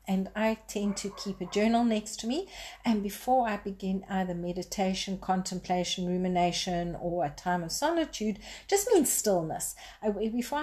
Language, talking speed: English, 150 wpm